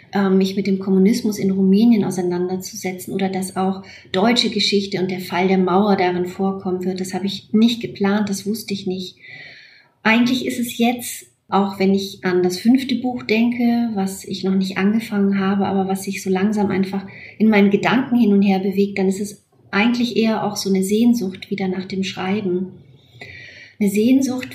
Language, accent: German, German